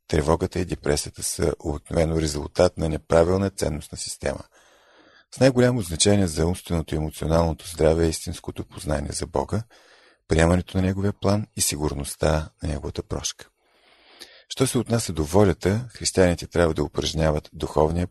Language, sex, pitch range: Bulgarian, male, 80-100 Hz